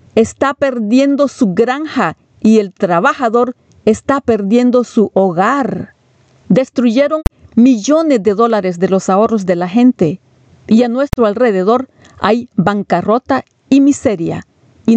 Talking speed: 120 wpm